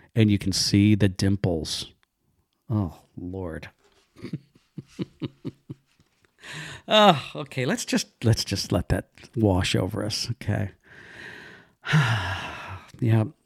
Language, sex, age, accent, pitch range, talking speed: English, male, 50-69, American, 105-130 Hz, 95 wpm